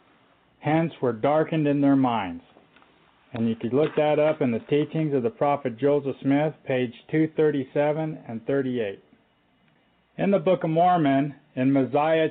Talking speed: 150 wpm